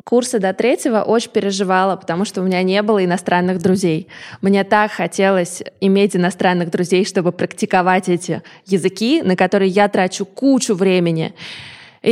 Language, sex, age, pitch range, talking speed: Russian, female, 20-39, 185-225 Hz, 150 wpm